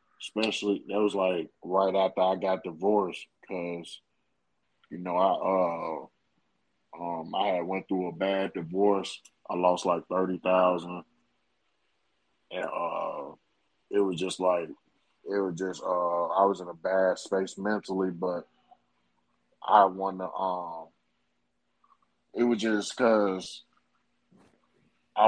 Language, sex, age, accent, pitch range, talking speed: English, male, 20-39, American, 90-100 Hz, 125 wpm